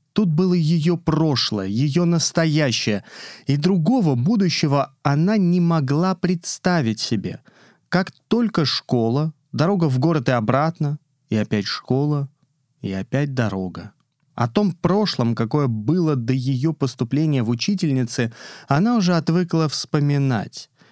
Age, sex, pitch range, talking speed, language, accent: 30-49, male, 120-155 Hz, 120 wpm, Russian, native